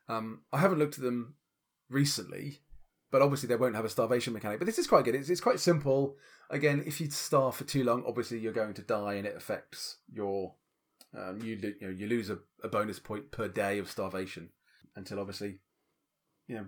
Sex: male